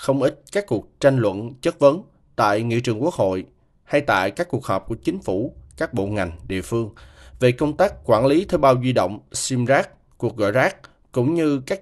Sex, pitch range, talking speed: male, 110-135 Hz, 220 wpm